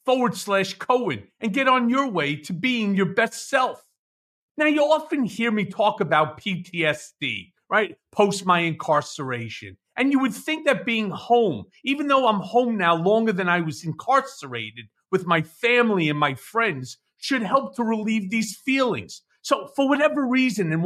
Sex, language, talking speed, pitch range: male, English, 170 wpm, 195-265 Hz